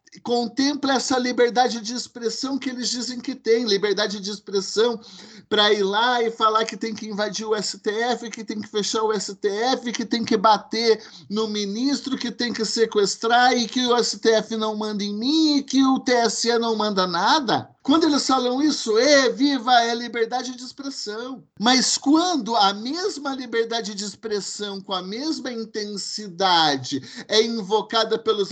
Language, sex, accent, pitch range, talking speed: Portuguese, male, Brazilian, 195-245 Hz, 165 wpm